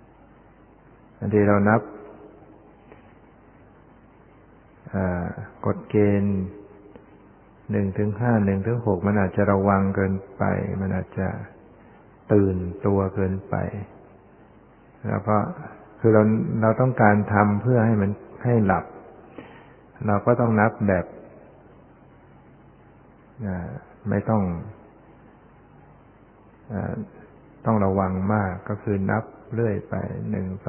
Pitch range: 100-110 Hz